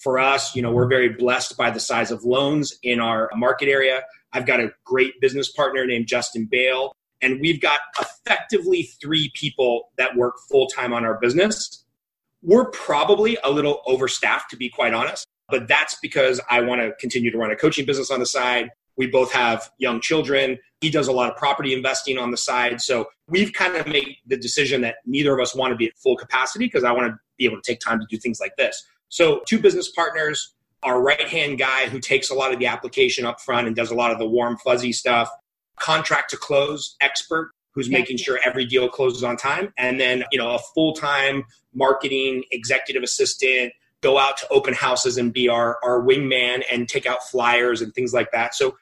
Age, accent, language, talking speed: 30-49, American, English, 210 wpm